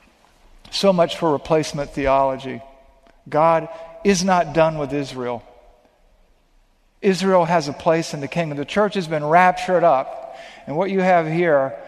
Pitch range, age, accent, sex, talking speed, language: 145-185 Hz, 50-69, American, male, 145 wpm, English